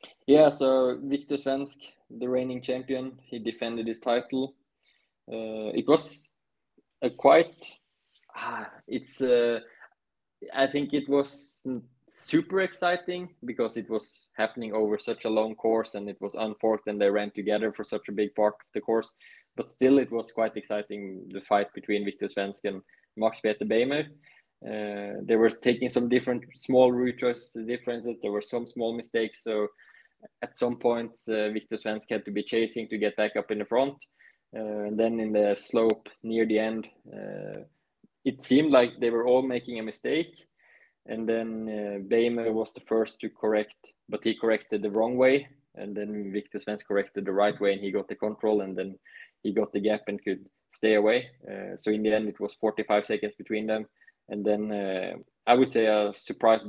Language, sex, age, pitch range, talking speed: English, male, 20-39, 105-125 Hz, 180 wpm